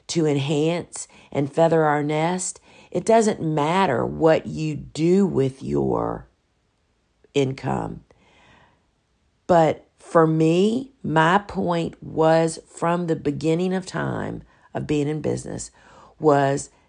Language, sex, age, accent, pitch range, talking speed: English, female, 50-69, American, 145-170 Hz, 110 wpm